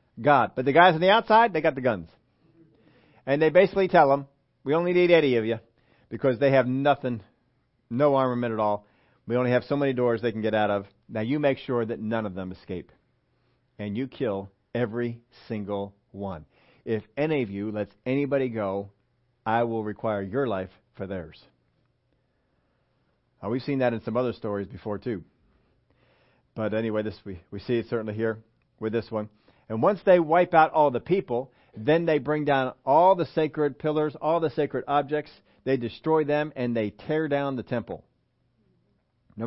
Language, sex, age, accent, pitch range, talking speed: English, male, 40-59, American, 115-155 Hz, 185 wpm